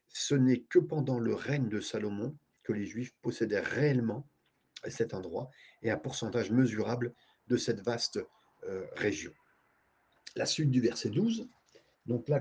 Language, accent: French, French